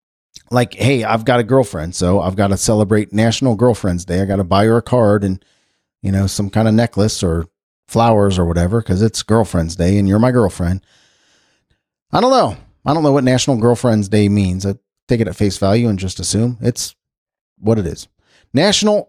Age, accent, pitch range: 40-59, American, 100-155 Hz